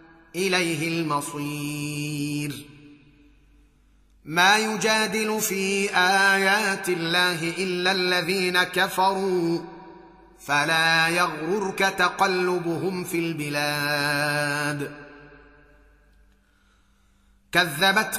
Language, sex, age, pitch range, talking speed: Arabic, male, 30-49, 165-195 Hz, 55 wpm